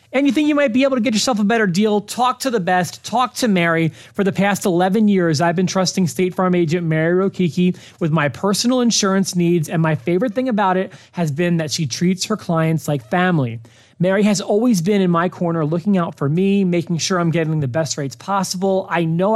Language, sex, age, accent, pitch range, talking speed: English, male, 30-49, American, 155-195 Hz, 230 wpm